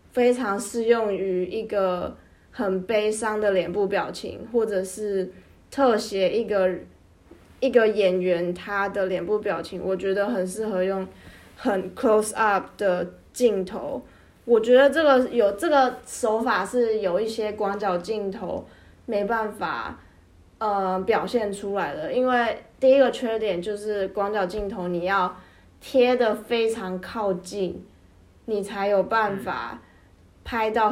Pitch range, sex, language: 185-225 Hz, female, Chinese